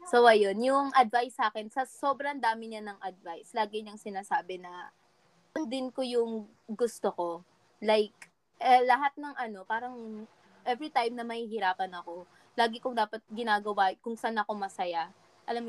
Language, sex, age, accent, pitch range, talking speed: Filipino, female, 20-39, native, 210-280 Hz, 155 wpm